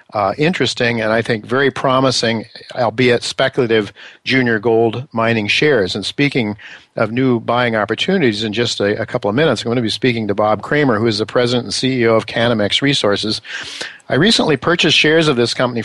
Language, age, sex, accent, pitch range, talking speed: English, 50-69, male, American, 105-130 Hz, 190 wpm